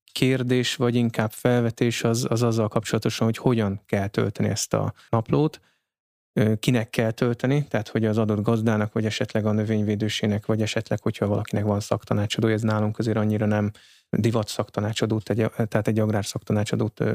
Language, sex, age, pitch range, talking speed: Hungarian, male, 20-39, 110-120 Hz, 145 wpm